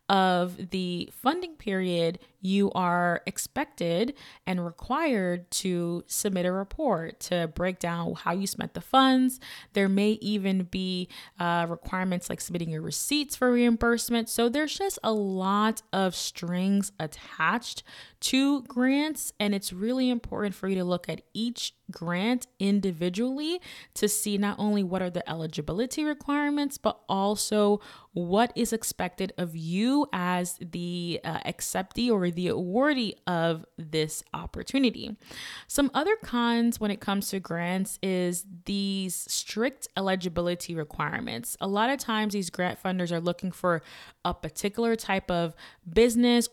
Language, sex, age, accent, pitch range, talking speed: English, female, 20-39, American, 175-230 Hz, 140 wpm